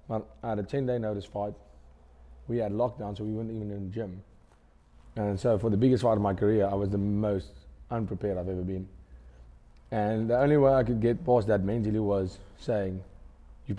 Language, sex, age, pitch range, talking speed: English, male, 30-49, 100-125 Hz, 200 wpm